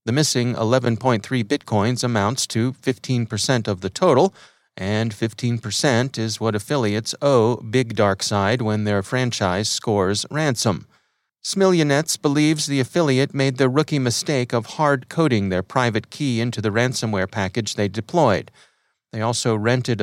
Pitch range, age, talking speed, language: 110-140 Hz, 30-49, 140 wpm, English